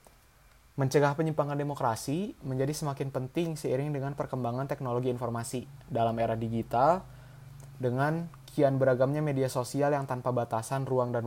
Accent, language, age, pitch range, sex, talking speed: native, Indonesian, 20-39, 120-140 Hz, male, 130 wpm